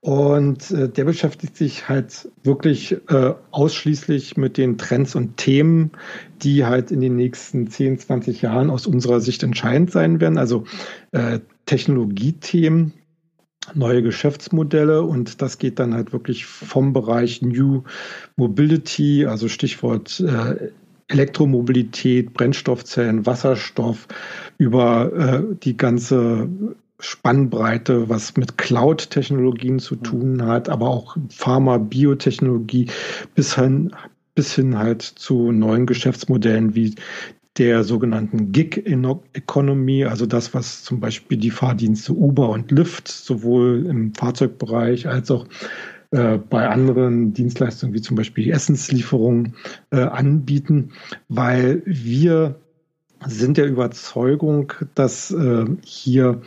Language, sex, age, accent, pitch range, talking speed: German, male, 50-69, German, 120-145 Hz, 115 wpm